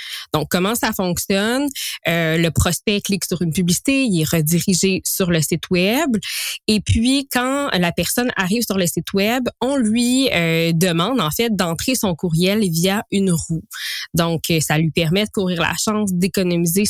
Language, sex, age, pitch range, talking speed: French, female, 20-39, 175-220 Hz, 175 wpm